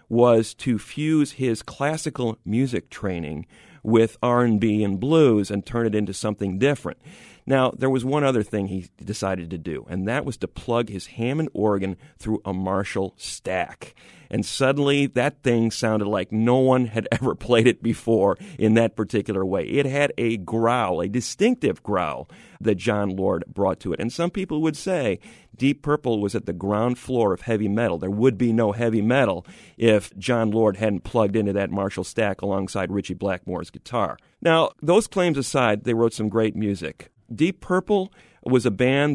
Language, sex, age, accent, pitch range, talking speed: English, male, 40-59, American, 105-140 Hz, 180 wpm